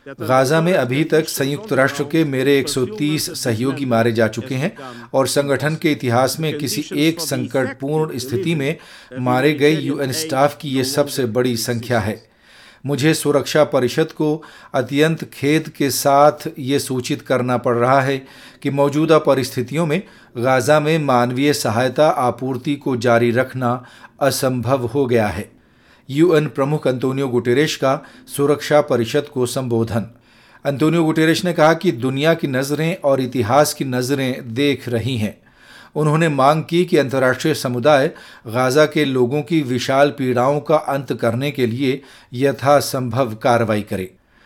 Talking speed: 145 wpm